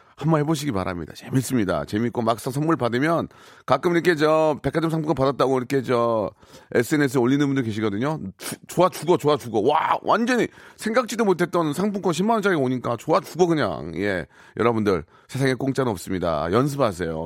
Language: Korean